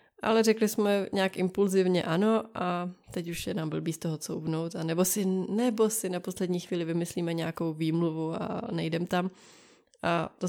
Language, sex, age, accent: Czech, female, 20-39, native